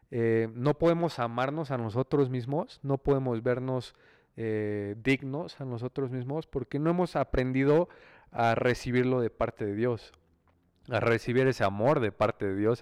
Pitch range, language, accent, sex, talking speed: 105-125 Hz, Spanish, Mexican, male, 155 wpm